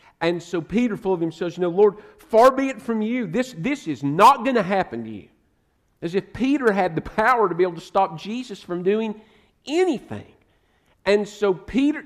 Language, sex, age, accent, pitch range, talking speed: English, male, 50-69, American, 165-220 Hz, 210 wpm